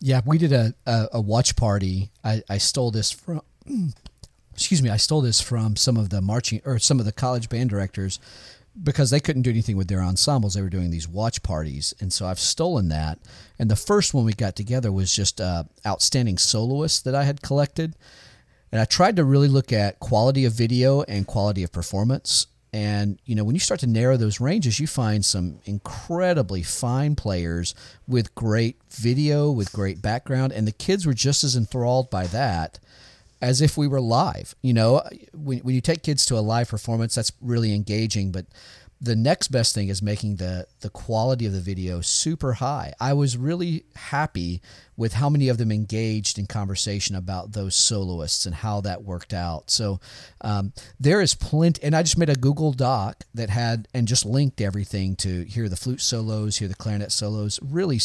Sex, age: male, 40-59